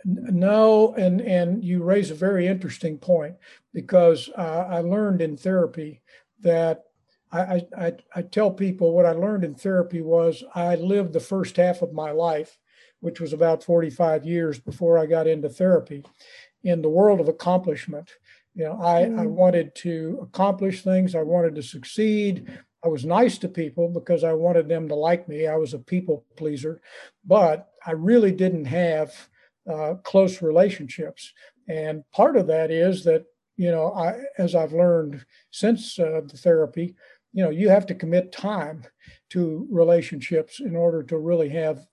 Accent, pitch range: American, 160-185 Hz